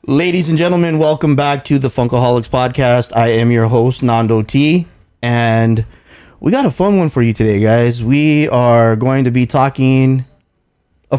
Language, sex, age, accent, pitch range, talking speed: English, male, 20-39, American, 120-155 Hz, 170 wpm